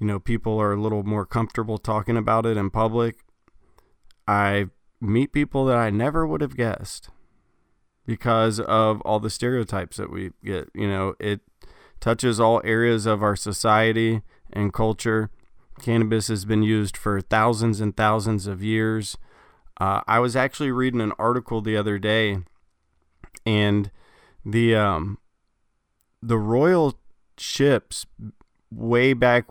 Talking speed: 140 wpm